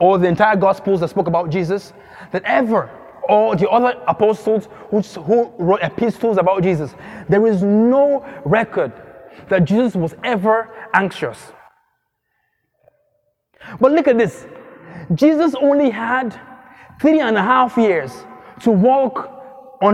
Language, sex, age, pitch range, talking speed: English, male, 20-39, 200-265 Hz, 125 wpm